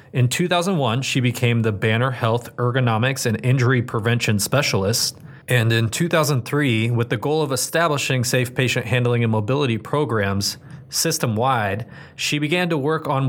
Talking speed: 145 wpm